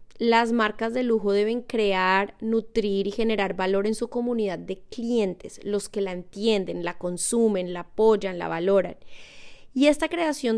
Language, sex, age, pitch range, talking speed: Spanish, female, 20-39, 200-255 Hz, 160 wpm